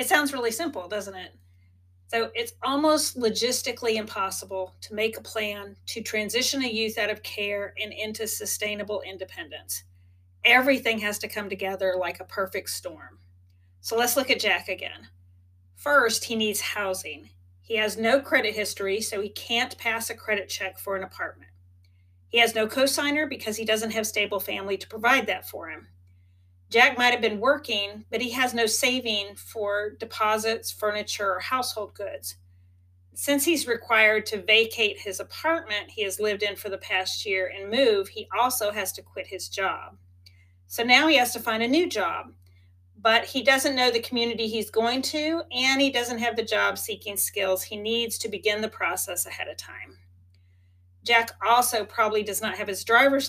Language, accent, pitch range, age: English, American, 185-235 Hz, 40-59